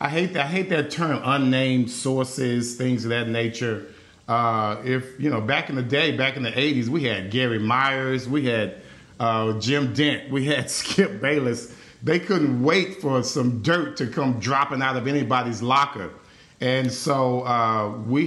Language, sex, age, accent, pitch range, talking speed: English, male, 40-59, American, 125-165 Hz, 180 wpm